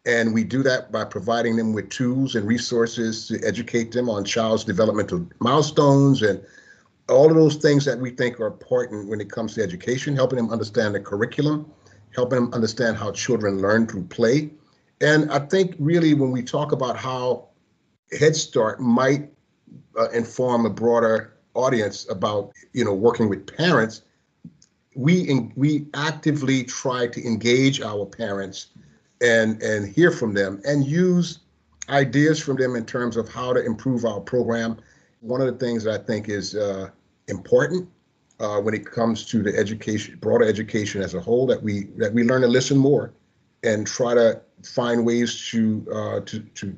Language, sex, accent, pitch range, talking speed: English, male, American, 110-135 Hz, 170 wpm